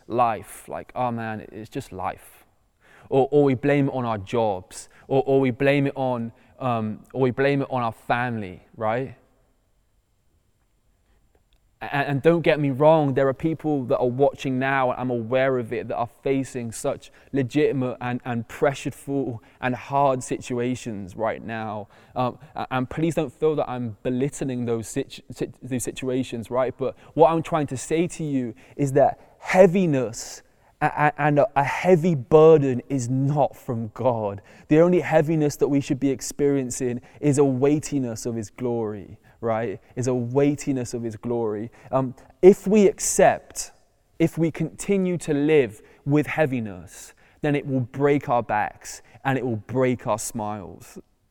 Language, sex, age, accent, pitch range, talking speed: English, male, 20-39, British, 115-145 Hz, 160 wpm